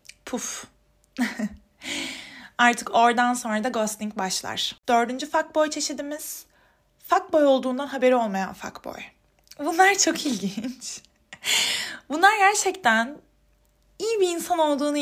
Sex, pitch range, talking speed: female, 220-305 Hz, 105 wpm